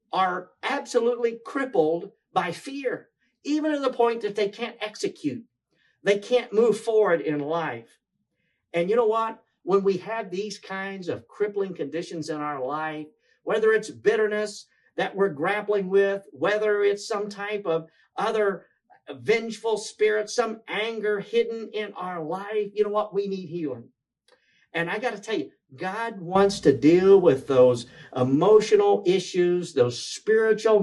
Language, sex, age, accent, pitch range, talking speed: English, male, 50-69, American, 170-225 Hz, 150 wpm